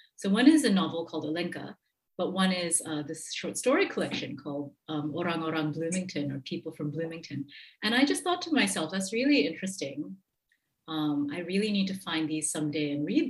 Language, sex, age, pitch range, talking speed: English, female, 40-59, 155-215 Hz, 195 wpm